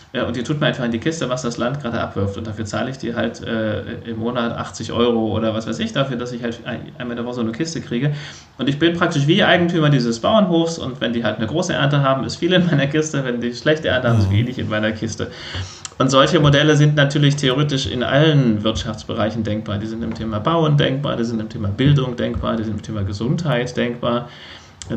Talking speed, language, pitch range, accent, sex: 245 wpm, German, 110-135 Hz, German, male